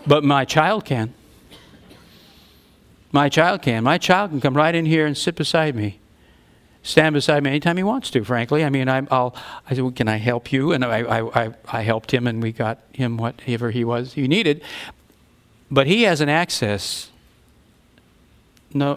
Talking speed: 185 wpm